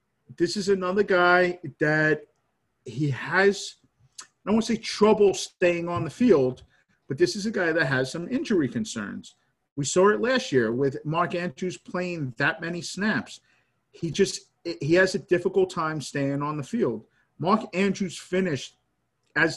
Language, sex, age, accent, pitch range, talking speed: English, male, 50-69, American, 150-210 Hz, 165 wpm